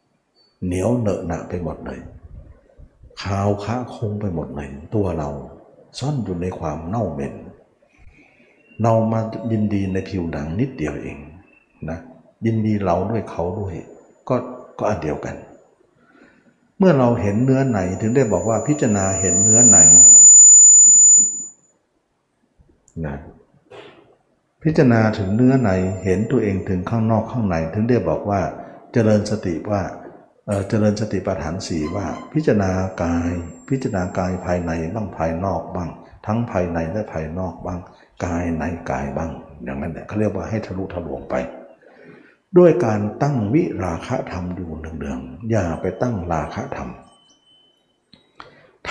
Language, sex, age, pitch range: Thai, male, 60-79, 85-115 Hz